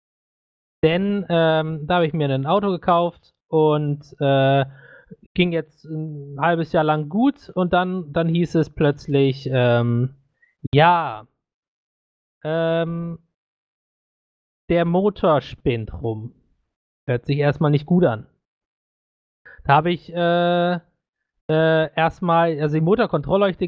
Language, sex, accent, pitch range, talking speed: German, male, German, 140-170 Hz, 115 wpm